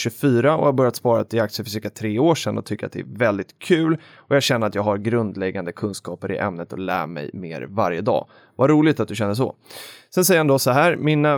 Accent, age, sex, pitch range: native, 30-49, male, 110-145 Hz